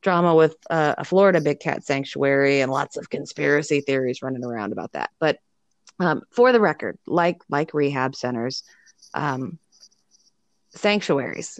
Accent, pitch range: American, 140-170 Hz